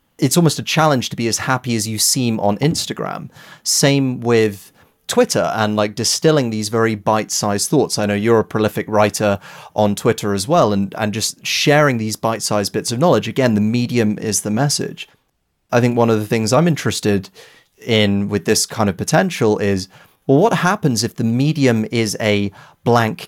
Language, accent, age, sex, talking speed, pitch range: English, British, 30-49, male, 185 wpm, 105-130 Hz